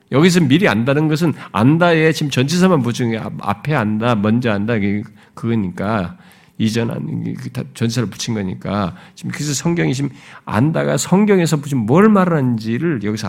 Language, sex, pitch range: Korean, male, 135-210 Hz